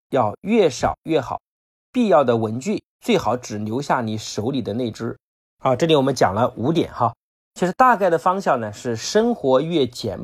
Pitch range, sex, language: 115-165 Hz, male, Chinese